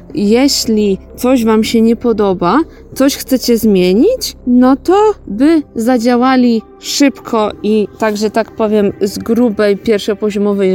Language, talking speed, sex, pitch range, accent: Polish, 115 wpm, female, 210-265 Hz, native